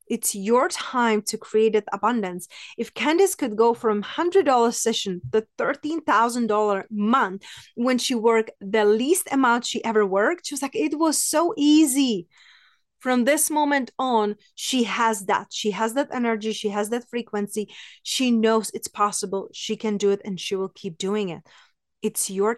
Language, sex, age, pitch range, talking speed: English, female, 30-49, 200-240 Hz, 170 wpm